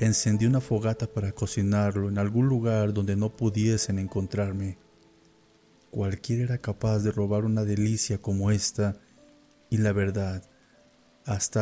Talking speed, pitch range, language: 130 wpm, 100-115 Hz, Spanish